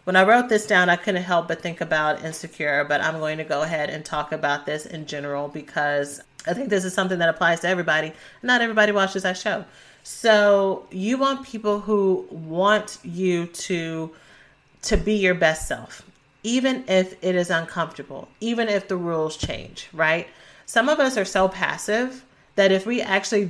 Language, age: English, 30-49